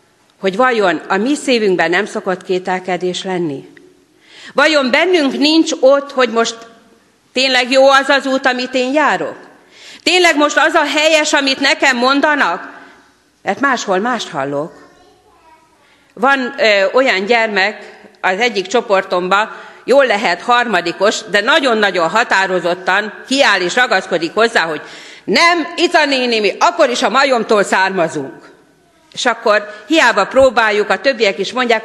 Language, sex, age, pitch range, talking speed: Hungarian, female, 40-59, 205-290 Hz, 135 wpm